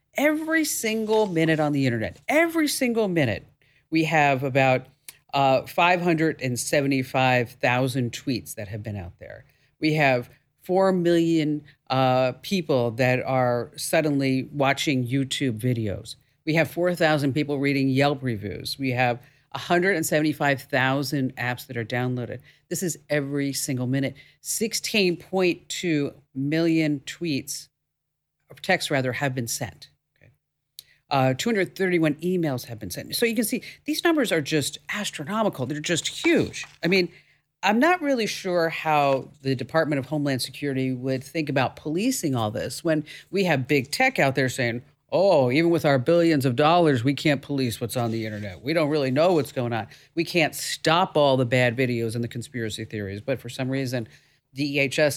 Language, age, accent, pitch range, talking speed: English, 50-69, American, 130-165 Hz, 155 wpm